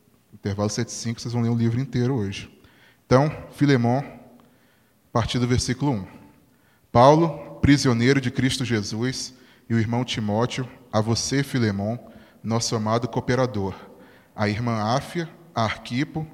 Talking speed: 130 wpm